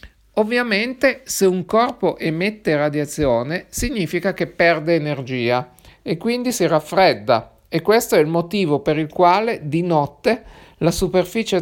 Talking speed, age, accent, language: 135 wpm, 50-69, native, Italian